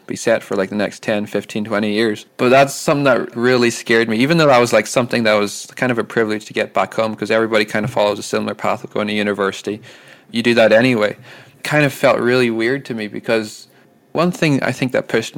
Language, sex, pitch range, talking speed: English, male, 110-125 Hz, 240 wpm